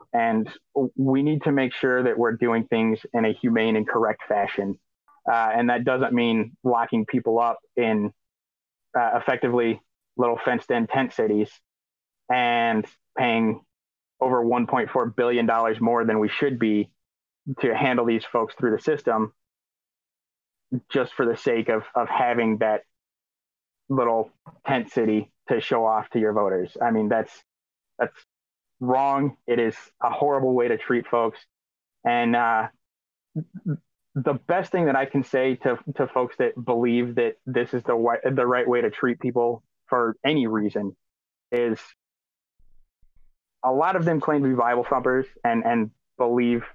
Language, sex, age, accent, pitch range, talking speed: English, male, 20-39, American, 110-130 Hz, 155 wpm